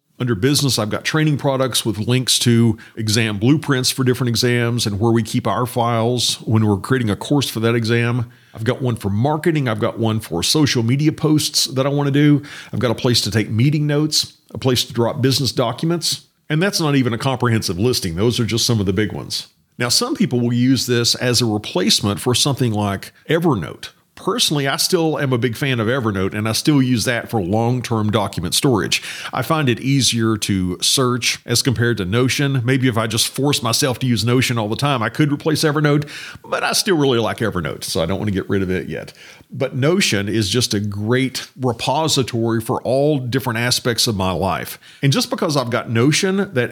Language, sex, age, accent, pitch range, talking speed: English, male, 50-69, American, 115-145 Hz, 215 wpm